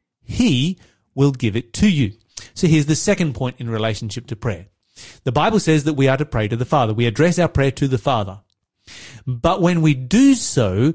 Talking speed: 210 wpm